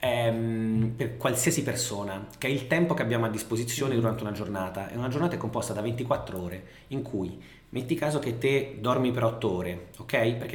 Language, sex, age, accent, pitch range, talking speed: Italian, male, 30-49, native, 115-145 Hz, 195 wpm